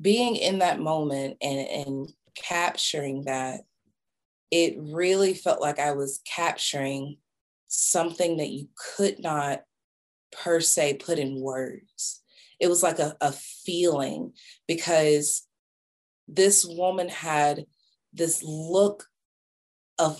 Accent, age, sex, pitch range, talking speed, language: American, 30-49, female, 145-190 Hz, 115 wpm, English